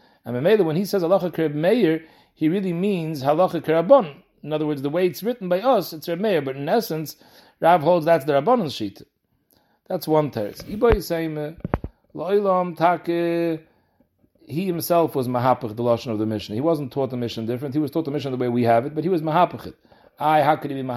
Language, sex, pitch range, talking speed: English, male, 125-175 Hz, 195 wpm